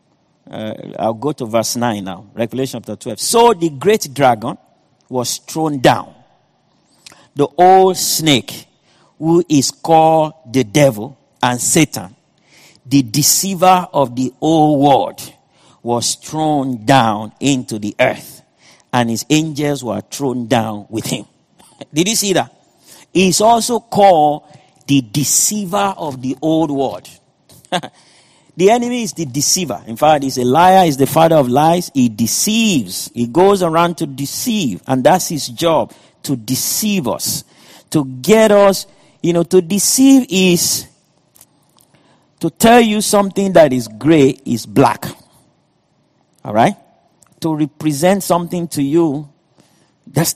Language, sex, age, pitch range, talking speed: English, male, 50-69, 130-180 Hz, 135 wpm